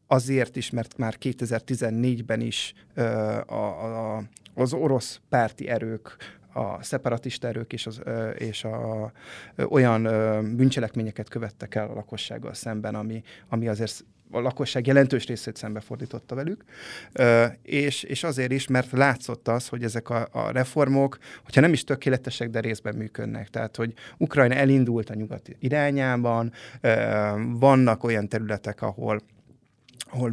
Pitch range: 110-130 Hz